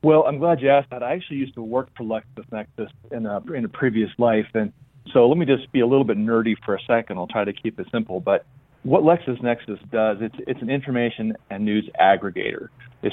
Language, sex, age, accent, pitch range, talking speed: English, male, 30-49, American, 105-130 Hz, 230 wpm